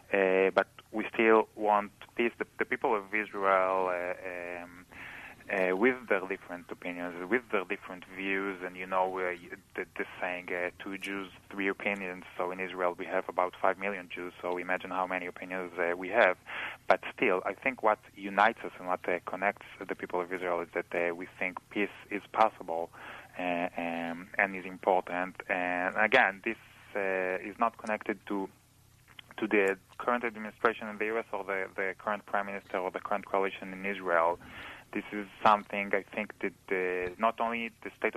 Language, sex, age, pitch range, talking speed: English, male, 20-39, 90-105 Hz, 180 wpm